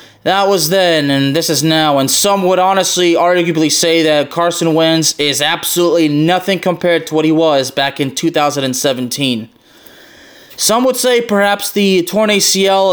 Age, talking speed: 20-39, 160 wpm